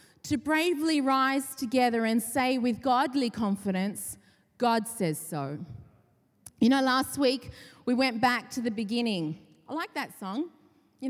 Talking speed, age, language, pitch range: 145 wpm, 30-49, English, 225-285 Hz